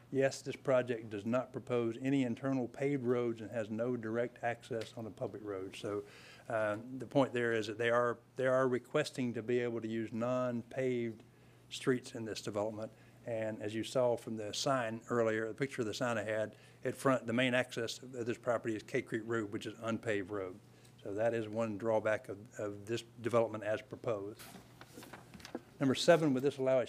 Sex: male